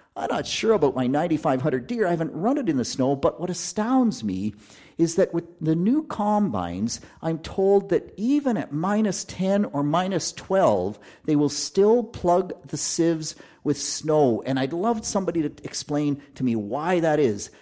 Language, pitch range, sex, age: English, 130-190 Hz, male, 50-69